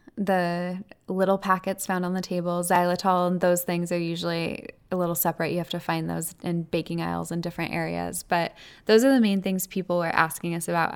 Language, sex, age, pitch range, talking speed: English, female, 10-29, 170-190 Hz, 210 wpm